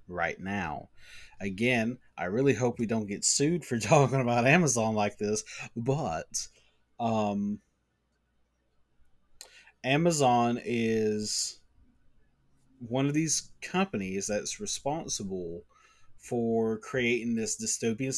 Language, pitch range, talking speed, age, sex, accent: English, 100-130 Hz, 100 wpm, 30-49, male, American